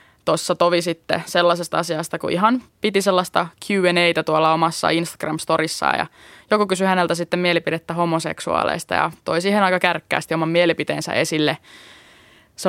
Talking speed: 135 wpm